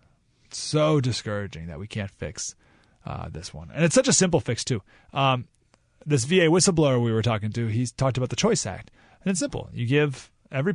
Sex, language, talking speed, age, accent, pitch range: male, English, 205 wpm, 30-49, American, 120-180 Hz